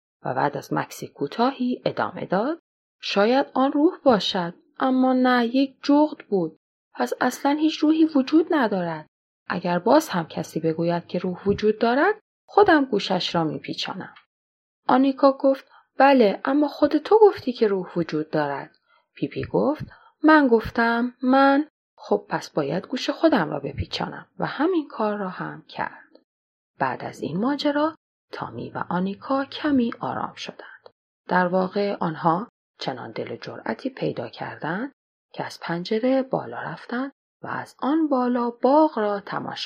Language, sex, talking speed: Persian, female, 145 wpm